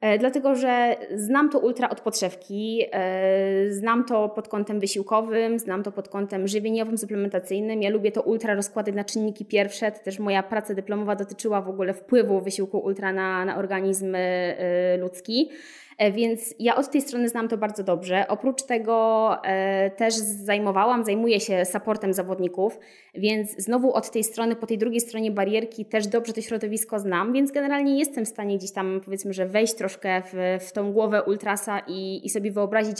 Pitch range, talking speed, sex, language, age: 195-230 Hz, 170 wpm, female, Polish, 20-39